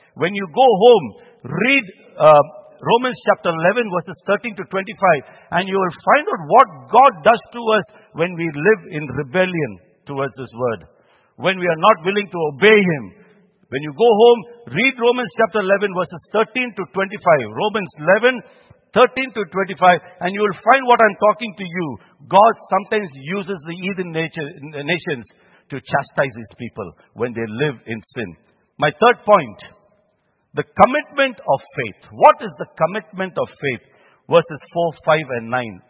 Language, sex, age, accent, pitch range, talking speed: English, male, 60-79, Indian, 150-210 Hz, 165 wpm